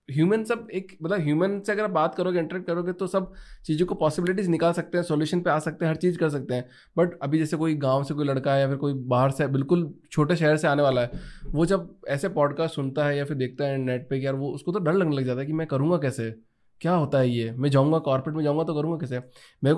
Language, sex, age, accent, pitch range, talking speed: Hindi, male, 20-39, native, 130-165 Hz, 265 wpm